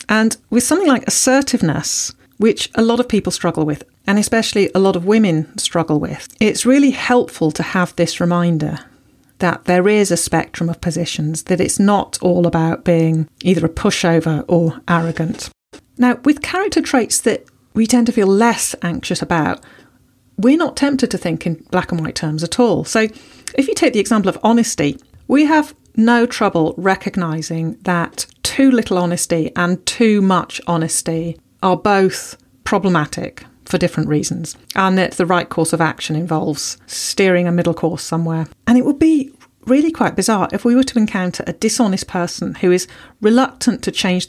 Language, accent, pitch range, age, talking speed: English, British, 170-230 Hz, 40-59, 175 wpm